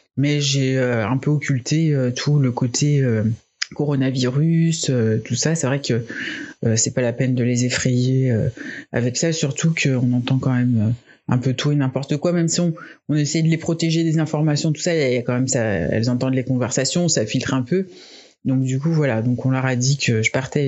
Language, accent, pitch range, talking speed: French, French, 125-150 Hz, 230 wpm